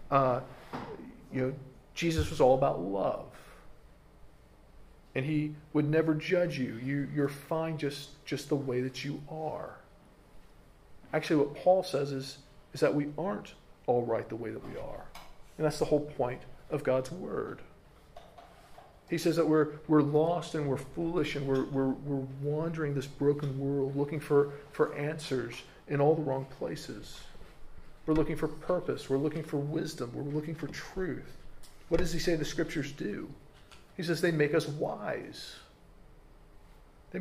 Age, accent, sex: 40-59, American, male